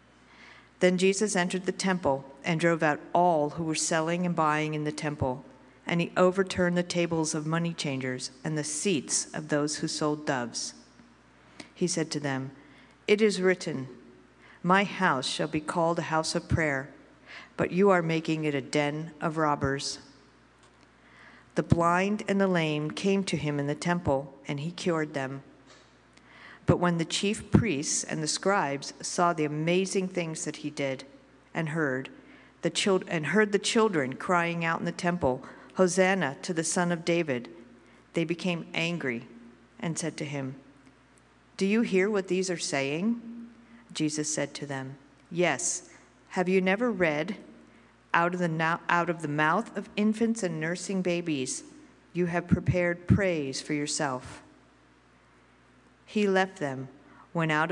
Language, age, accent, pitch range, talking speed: English, 50-69, American, 135-180 Hz, 155 wpm